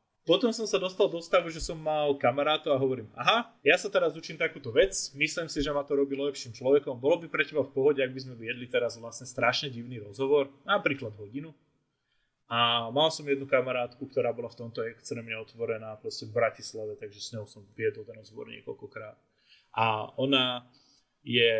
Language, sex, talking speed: Czech, male, 190 wpm